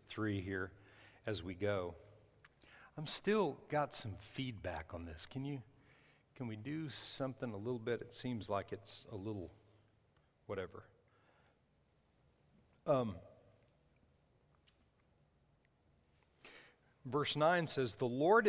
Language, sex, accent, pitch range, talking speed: English, male, American, 110-145 Hz, 115 wpm